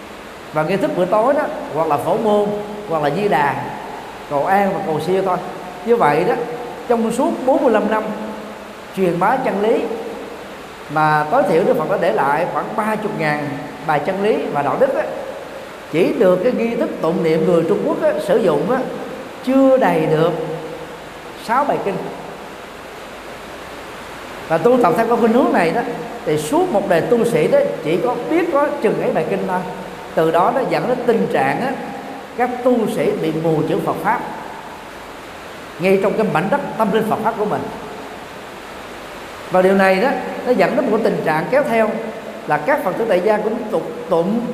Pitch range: 175-245 Hz